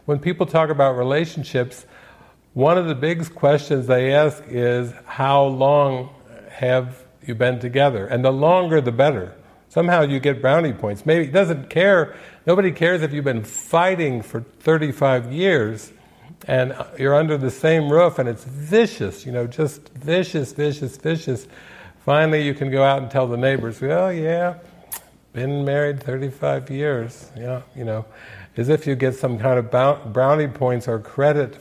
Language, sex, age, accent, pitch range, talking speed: English, male, 50-69, American, 125-150 Hz, 165 wpm